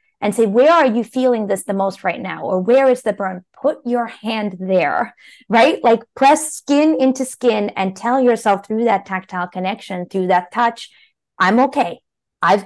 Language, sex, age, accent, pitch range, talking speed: English, female, 30-49, American, 195-255 Hz, 185 wpm